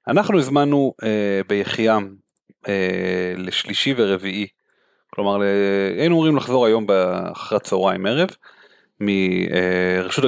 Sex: male